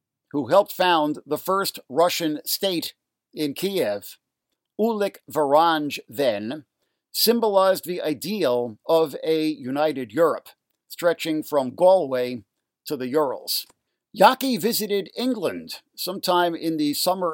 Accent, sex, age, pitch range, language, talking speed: American, male, 50-69, 145-205 Hz, English, 110 wpm